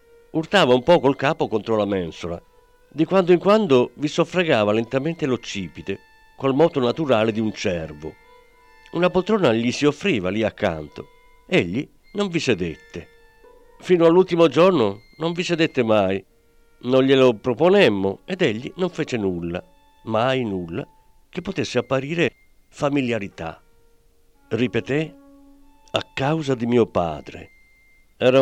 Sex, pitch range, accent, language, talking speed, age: male, 105-180 Hz, native, Italian, 130 wpm, 50-69